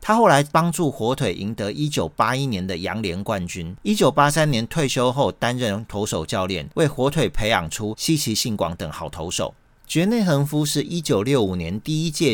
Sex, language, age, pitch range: male, Chinese, 40-59, 95-145 Hz